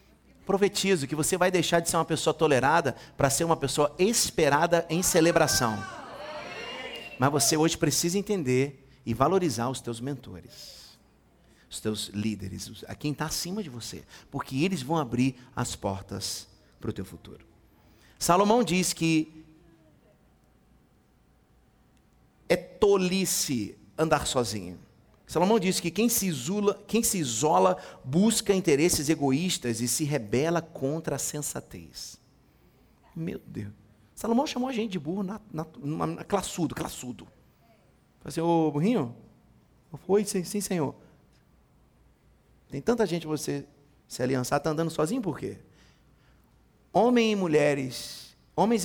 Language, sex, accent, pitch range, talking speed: Portuguese, male, Brazilian, 125-180 Hz, 135 wpm